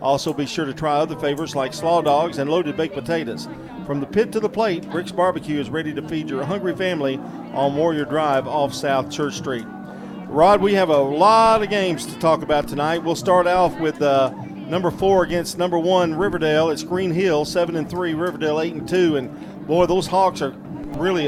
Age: 50-69